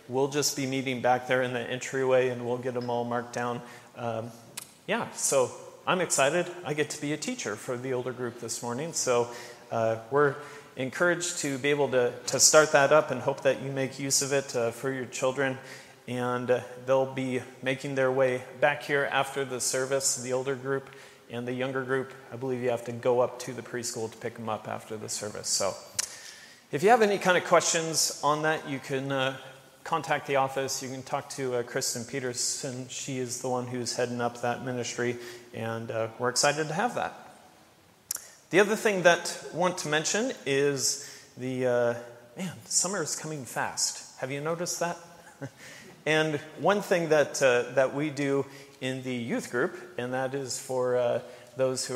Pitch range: 125-145 Hz